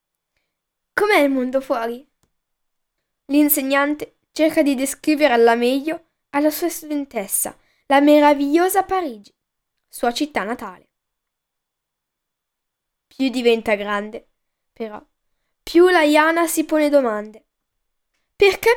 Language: Italian